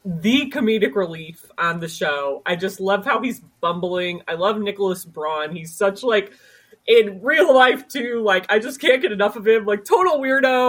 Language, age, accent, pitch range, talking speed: English, 30-49, American, 185-240 Hz, 190 wpm